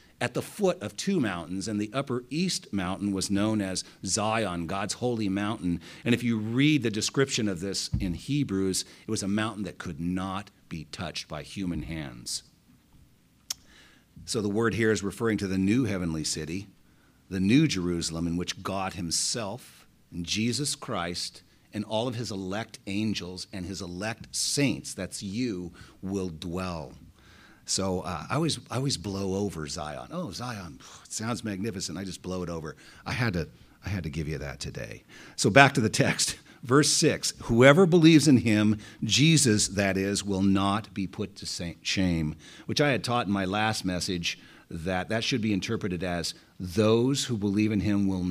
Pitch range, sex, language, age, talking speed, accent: 90-115 Hz, male, English, 40-59, 180 wpm, American